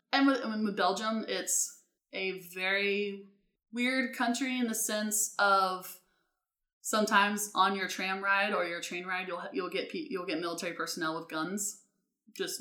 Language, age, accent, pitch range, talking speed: English, 20-39, American, 175-220 Hz, 155 wpm